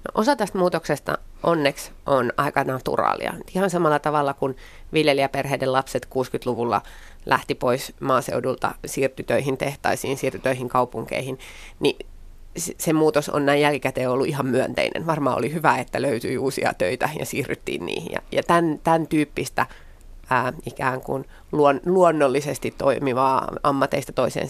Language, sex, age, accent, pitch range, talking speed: Finnish, female, 30-49, native, 135-160 Hz, 135 wpm